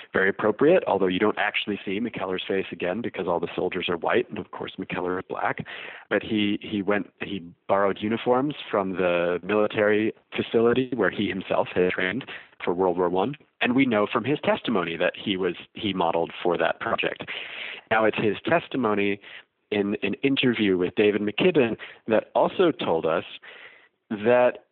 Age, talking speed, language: 40-59, 170 wpm, English